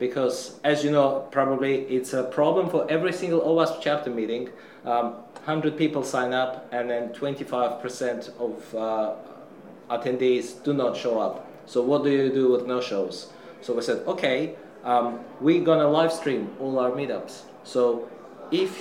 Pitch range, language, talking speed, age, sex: 125-145 Hz, English, 165 wpm, 30-49, male